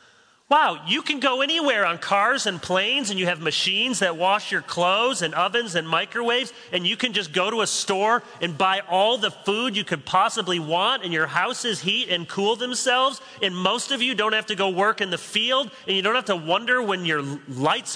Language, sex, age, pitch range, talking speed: English, male, 40-59, 145-225 Hz, 220 wpm